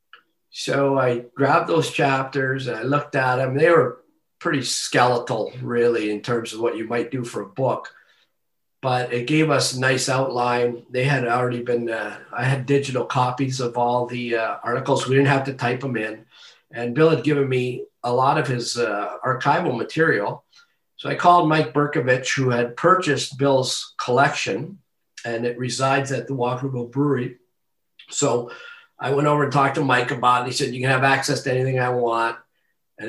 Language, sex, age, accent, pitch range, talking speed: English, male, 50-69, American, 120-140 Hz, 185 wpm